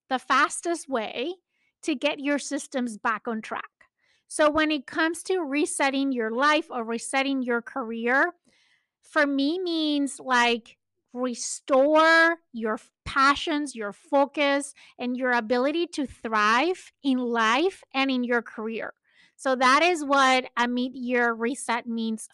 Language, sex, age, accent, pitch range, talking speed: English, female, 30-49, American, 235-285 Hz, 135 wpm